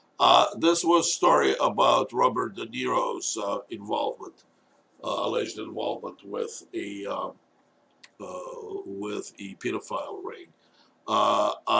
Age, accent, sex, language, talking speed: 60-79, American, male, English, 110 wpm